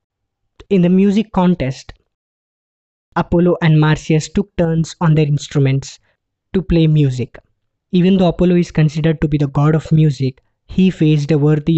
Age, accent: 20-39, Indian